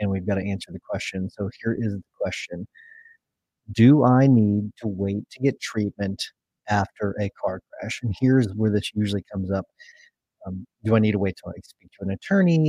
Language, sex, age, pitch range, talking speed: English, male, 30-49, 100-115 Hz, 200 wpm